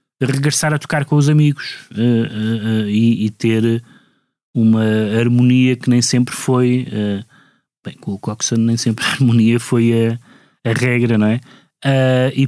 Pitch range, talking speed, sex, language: 110-140 Hz, 145 wpm, male, Portuguese